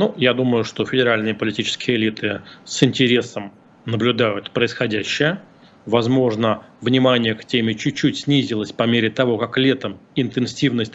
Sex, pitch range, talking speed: male, 110-130 Hz, 125 wpm